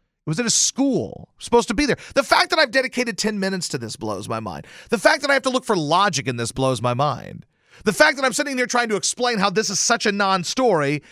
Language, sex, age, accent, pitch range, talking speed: English, male, 40-59, American, 165-225 Hz, 270 wpm